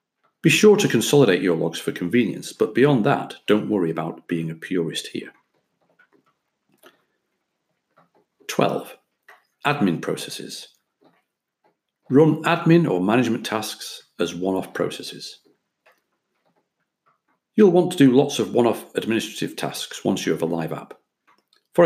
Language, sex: English, male